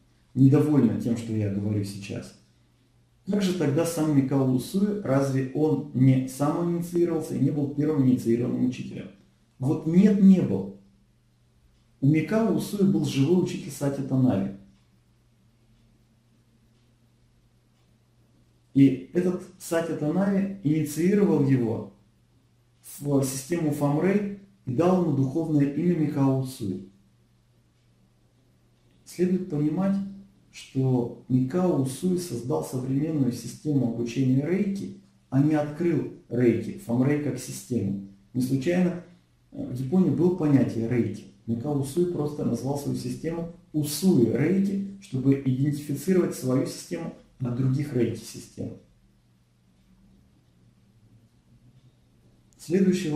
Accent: native